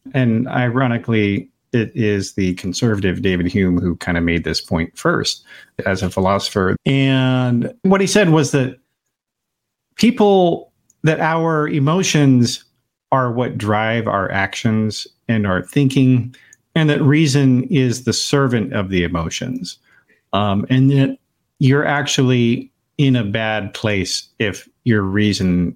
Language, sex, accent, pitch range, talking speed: English, male, American, 95-135 Hz, 135 wpm